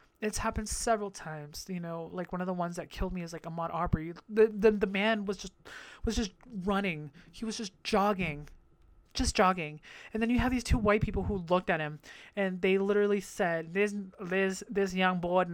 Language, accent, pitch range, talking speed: English, American, 155-200 Hz, 210 wpm